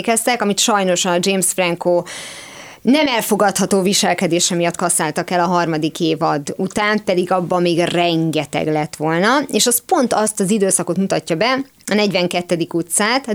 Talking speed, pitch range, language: 145 wpm, 180-230 Hz, Hungarian